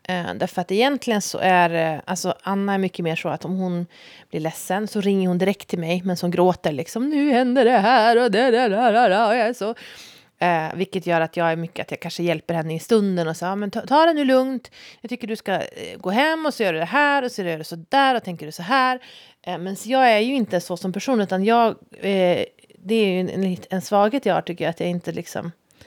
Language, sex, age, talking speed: Swedish, female, 30-49, 275 wpm